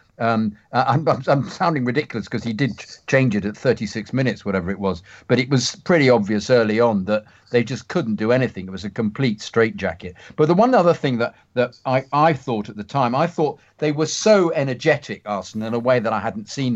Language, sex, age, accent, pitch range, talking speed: English, male, 50-69, British, 105-140 Hz, 220 wpm